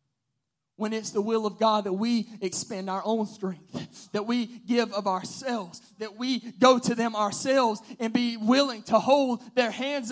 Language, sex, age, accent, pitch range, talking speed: English, male, 20-39, American, 250-365 Hz, 180 wpm